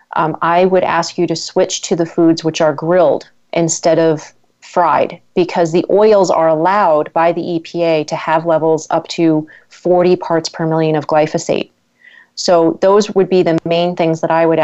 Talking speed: 185 wpm